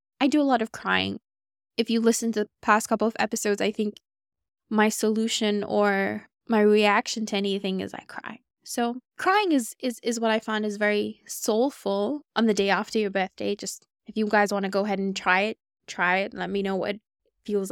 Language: English